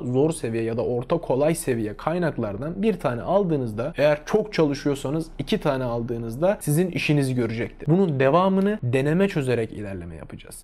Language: Turkish